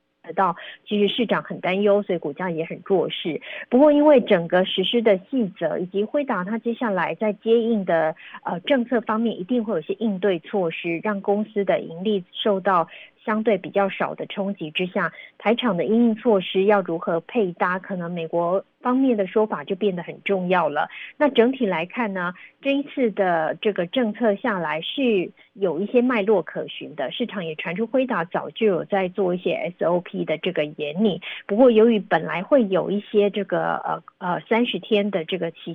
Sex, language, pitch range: female, Chinese, 180-225 Hz